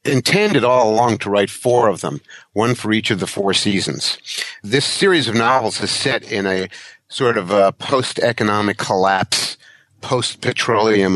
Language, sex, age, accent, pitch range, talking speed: English, male, 50-69, American, 100-125 Hz, 155 wpm